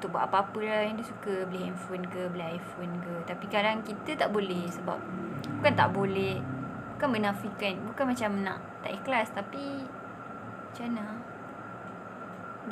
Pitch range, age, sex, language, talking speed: 185-235 Hz, 20-39, female, Malay, 145 wpm